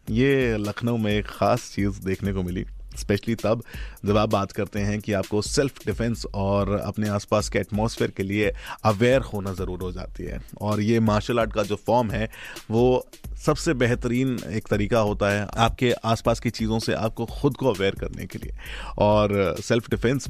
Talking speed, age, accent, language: 185 wpm, 30-49, native, Hindi